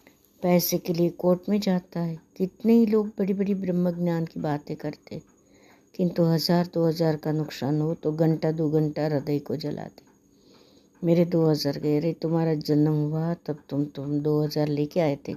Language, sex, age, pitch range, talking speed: Hindi, female, 60-79, 155-190 Hz, 185 wpm